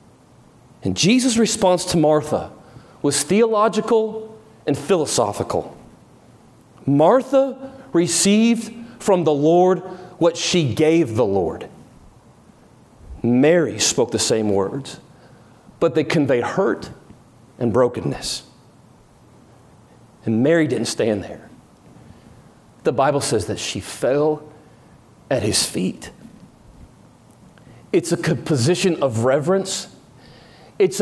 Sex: male